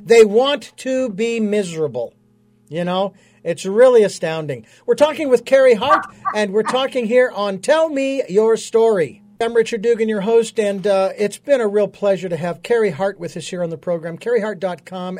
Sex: male